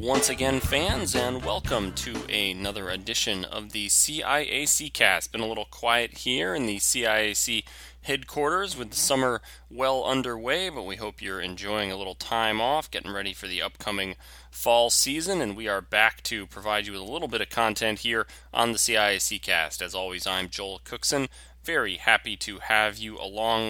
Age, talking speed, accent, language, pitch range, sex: 20-39, 180 wpm, American, English, 95-125 Hz, male